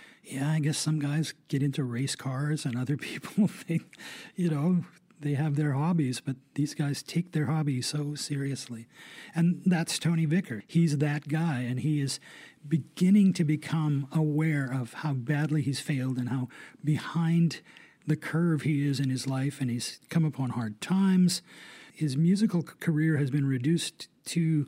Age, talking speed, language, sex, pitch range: 40-59, 170 wpm, English, male, 140-170 Hz